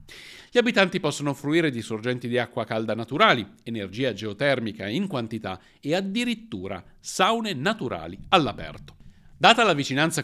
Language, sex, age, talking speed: Italian, male, 50-69, 130 wpm